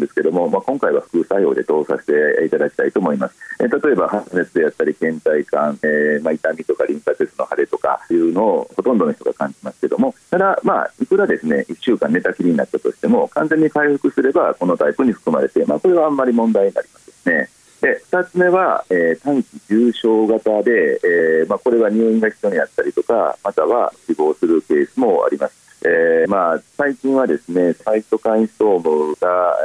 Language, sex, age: Japanese, male, 40-59